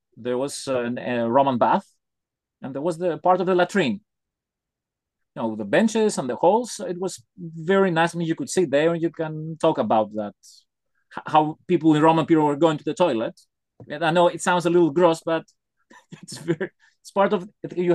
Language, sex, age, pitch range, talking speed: English, male, 30-49, 140-180 Hz, 195 wpm